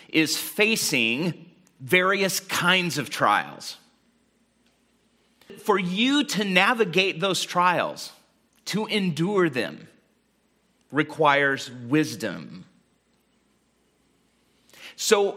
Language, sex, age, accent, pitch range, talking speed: English, male, 40-59, American, 165-225 Hz, 70 wpm